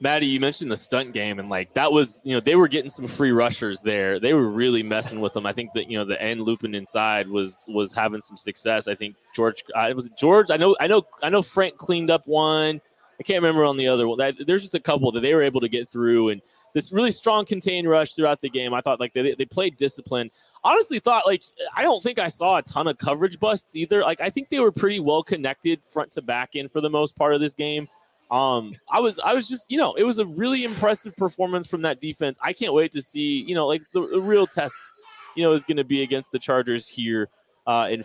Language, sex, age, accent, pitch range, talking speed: English, male, 20-39, American, 115-175 Hz, 260 wpm